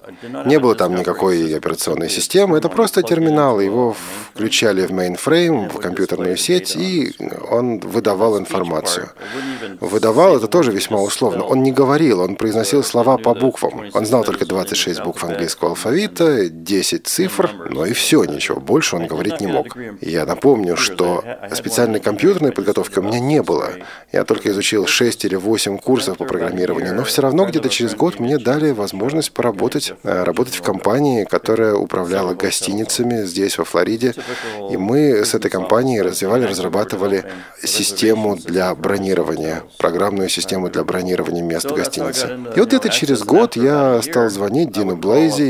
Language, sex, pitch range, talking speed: Russian, male, 100-140 Hz, 155 wpm